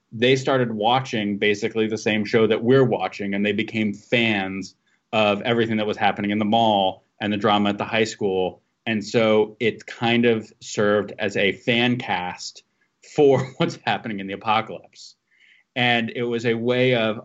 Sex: male